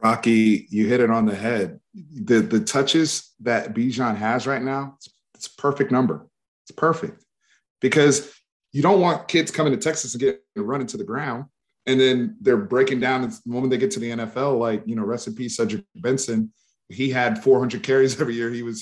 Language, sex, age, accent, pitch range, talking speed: English, male, 30-49, American, 120-160 Hz, 205 wpm